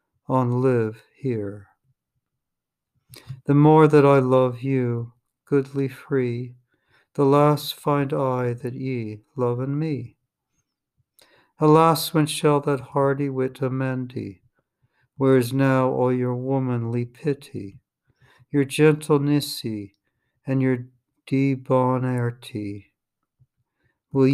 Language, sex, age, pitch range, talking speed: English, male, 60-79, 120-140 Hz, 100 wpm